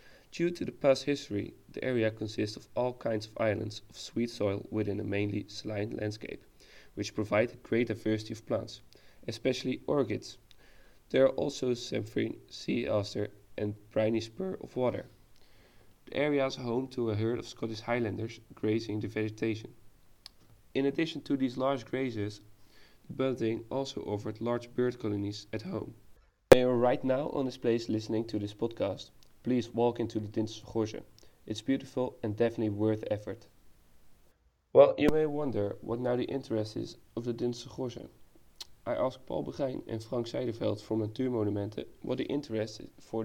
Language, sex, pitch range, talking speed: English, male, 105-125 Hz, 160 wpm